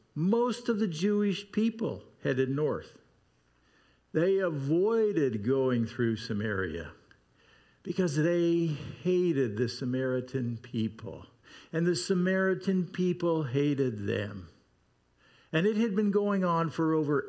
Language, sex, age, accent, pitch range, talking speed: English, male, 50-69, American, 125-180 Hz, 110 wpm